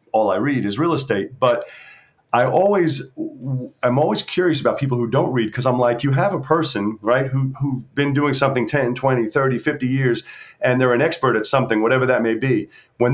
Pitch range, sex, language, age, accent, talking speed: 125-155 Hz, male, English, 40-59, American, 210 wpm